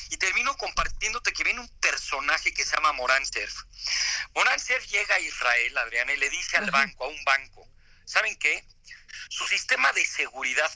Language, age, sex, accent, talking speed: Spanish, 50-69, male, Mexican, 175 wpm